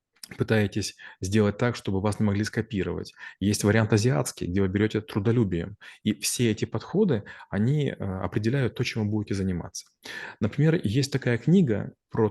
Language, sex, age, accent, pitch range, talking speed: Russian, male, 20-39, native, 100-120 Hz, 150 wpm